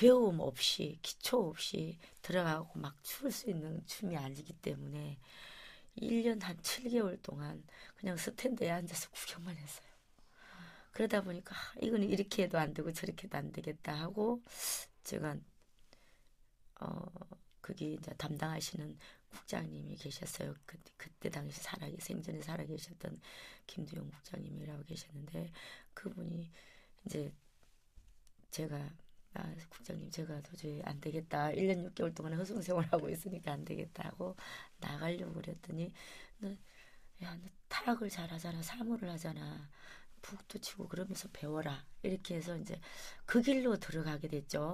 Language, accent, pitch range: Korean, native, 160-205 Hz